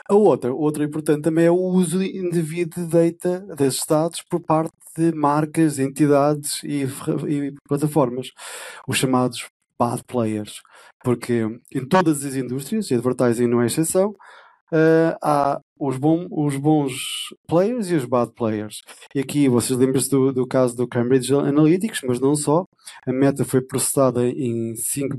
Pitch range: 130-165 Hz